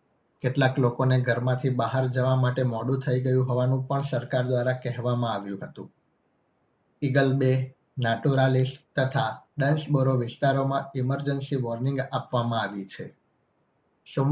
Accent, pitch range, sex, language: native, 125-140 Hz, male, Gujarati